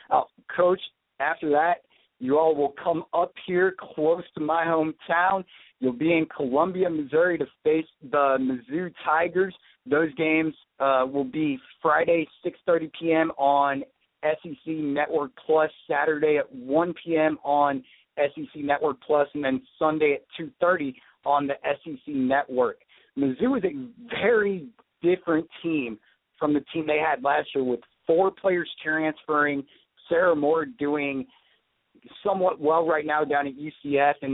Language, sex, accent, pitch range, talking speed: English, male, American, 140-170 Hz, 140 wpm